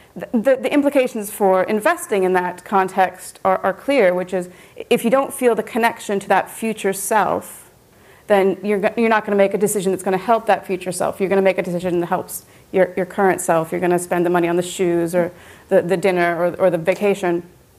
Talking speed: 235 wpm